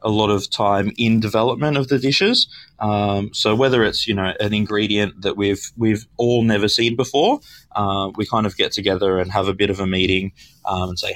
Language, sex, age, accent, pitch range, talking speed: English, male, 20-39, Australian, 95-110 Hz, 215 wpm